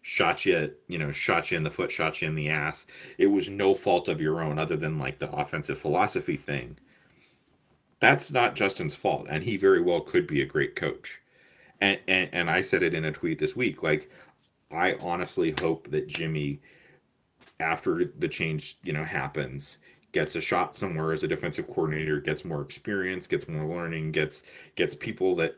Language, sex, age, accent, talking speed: English, male, 30-49, American, 190 wpm